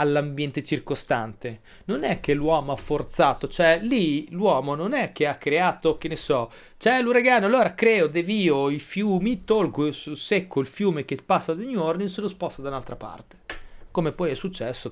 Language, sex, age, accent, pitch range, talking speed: Italian, male, 30-49, native, 120-195 Hz, 195 wpm